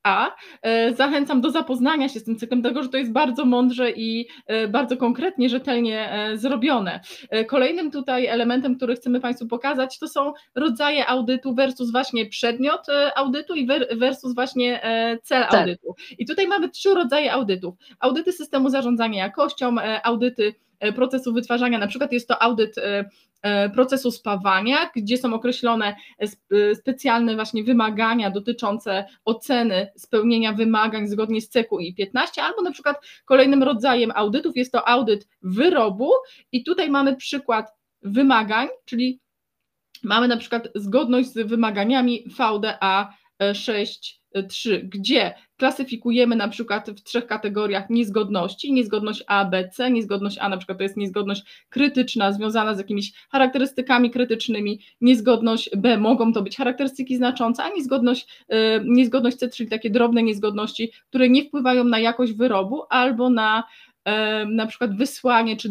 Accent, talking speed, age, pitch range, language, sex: native, 140 wpm, 20-39, 215-260 Hz, Polish, female